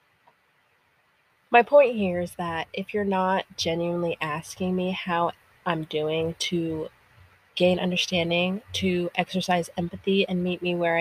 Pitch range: 160-190 Hz